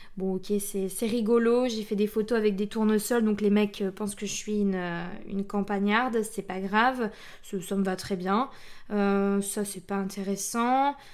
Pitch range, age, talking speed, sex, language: 205-260 Hz, 20-39, 195 wpm, female, French